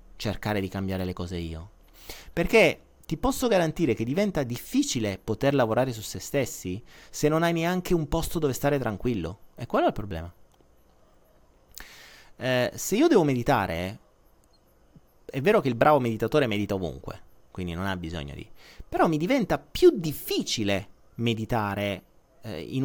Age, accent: 30-49, native